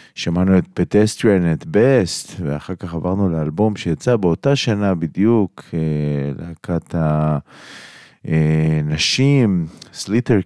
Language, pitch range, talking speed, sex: Hebrew, 75-100 Hz, 90 wpm, male